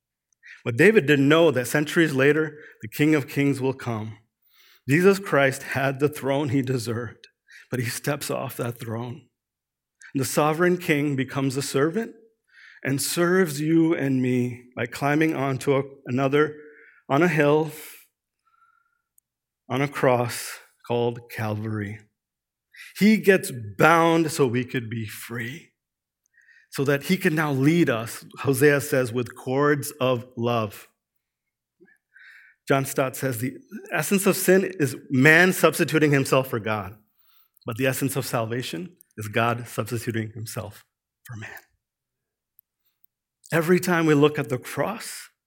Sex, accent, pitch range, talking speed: male, American, 120-155 Hz, 135 wpm